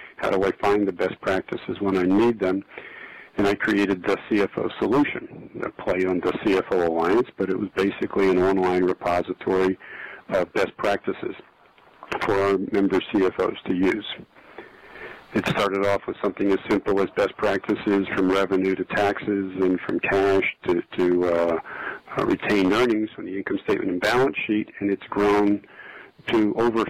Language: English